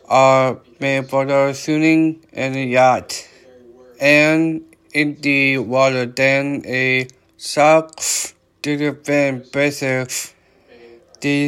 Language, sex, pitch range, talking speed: English, male, 130-150 Hz, 100 wpm